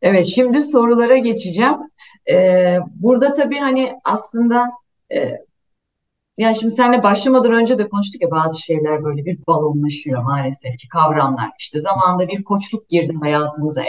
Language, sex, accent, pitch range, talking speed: Turkish, female, native, 180-245 Hz, 140 wpm